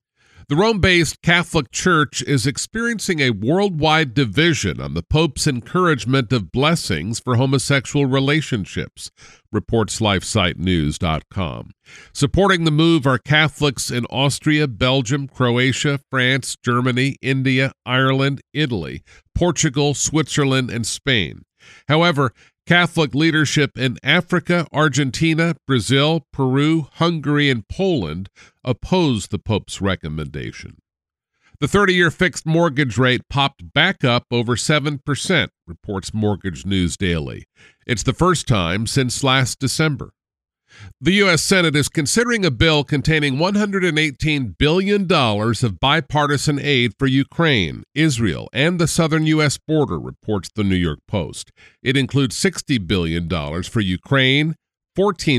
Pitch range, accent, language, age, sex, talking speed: 110-155 Hz, American, English, 50-69, male, 115 wpm